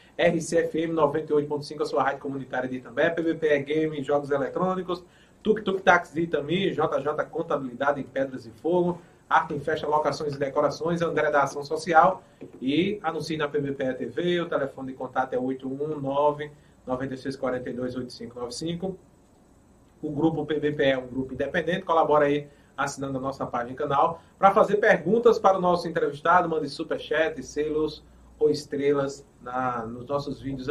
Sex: male